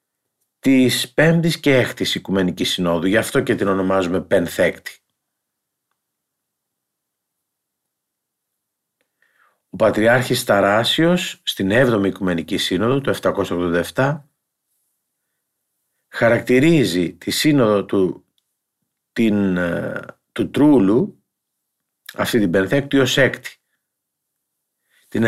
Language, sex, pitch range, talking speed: Greek, male, 95-140 Hz, 80 wpm